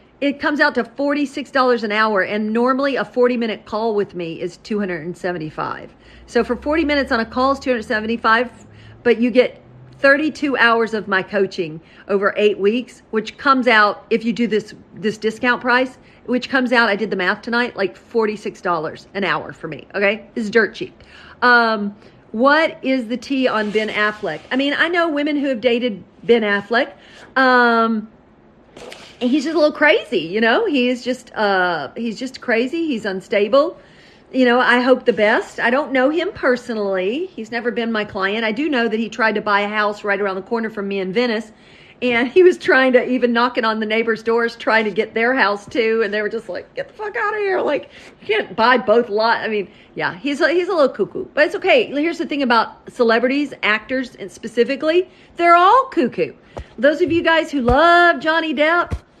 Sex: female